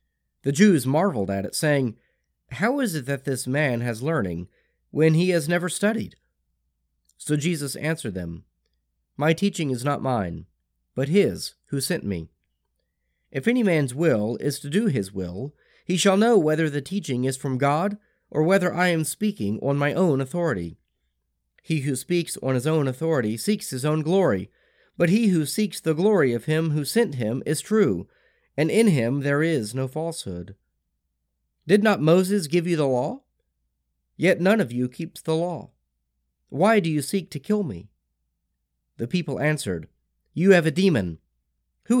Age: 30-49